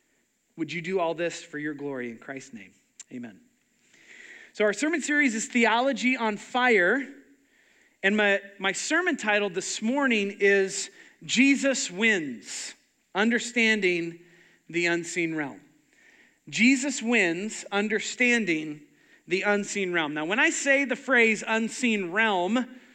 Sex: male